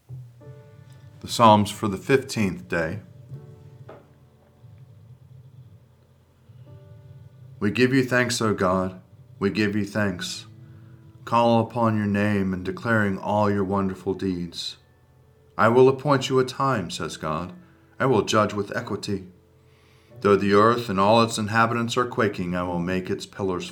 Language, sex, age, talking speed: English, male, 40-59, 135 wpm